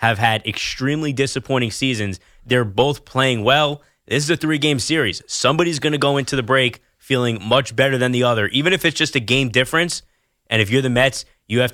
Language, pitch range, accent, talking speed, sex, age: English, 115-140 Hz, American, 210 wpm, male, 20-39